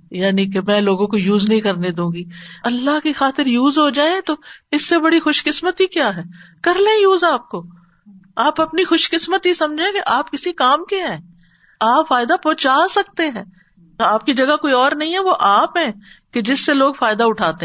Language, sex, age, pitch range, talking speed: Urdu, female, 50-69, 180-275 Hz, 205 wpm